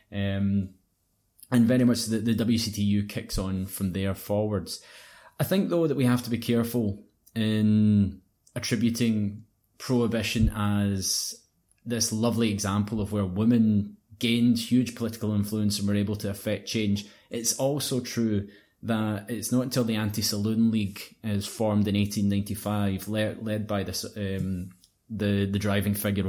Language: English